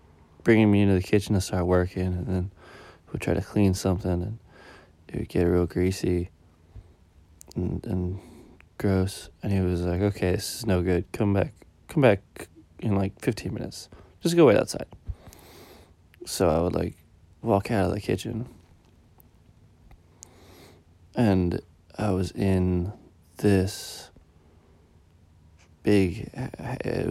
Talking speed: 135 wpm